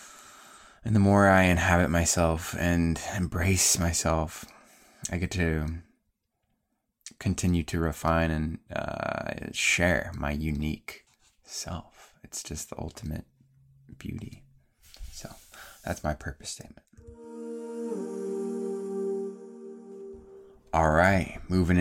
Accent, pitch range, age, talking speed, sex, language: American, 80-95 Hz, 20-39, 95 wpm, male, English